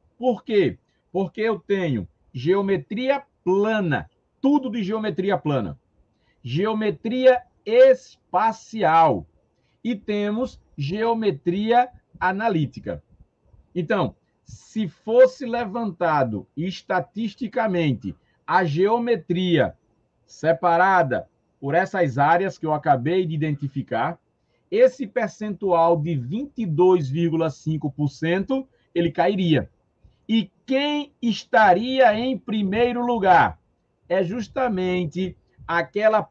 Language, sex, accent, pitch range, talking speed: Portuguese, male, Brazilian, 160-225 Hz, 80 wpm